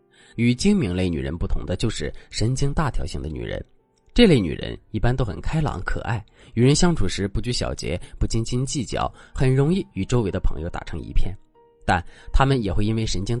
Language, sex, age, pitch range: Chinese, male, 20-39, 95-140 Hz